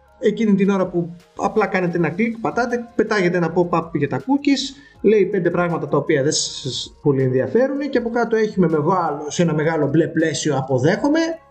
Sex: male